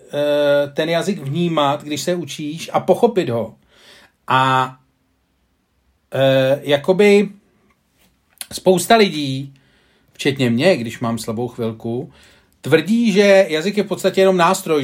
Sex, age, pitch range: male, 40-59, 135-185 Hz